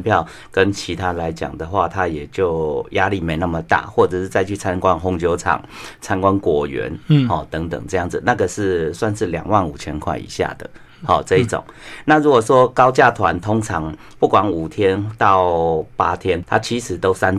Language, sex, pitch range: Chinese, male, 85-115 Hz